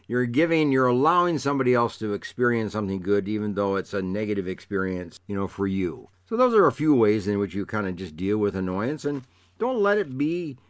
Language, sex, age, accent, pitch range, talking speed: English, male, 60-79, American, 100-140 Hz, 225 wpm